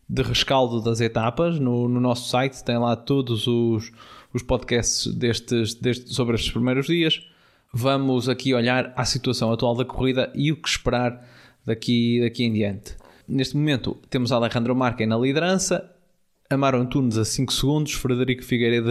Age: 20-39